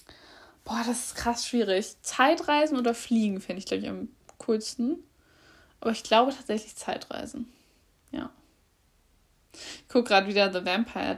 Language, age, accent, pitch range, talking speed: German, 10-29, German, 210-285 Hz, 140 wpm